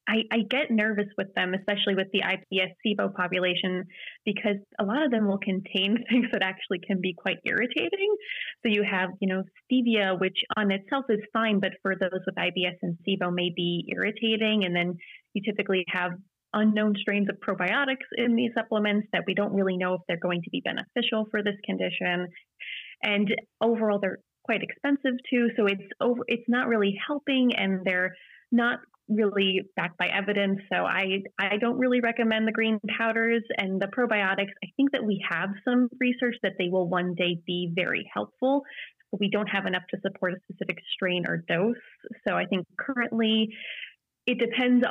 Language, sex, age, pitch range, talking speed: English, female, 20-39, 185-230 Hz, 185 wpm